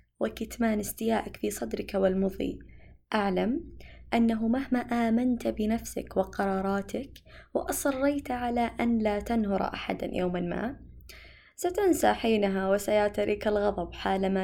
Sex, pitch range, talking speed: female, 200-270 Hz, 100 wpm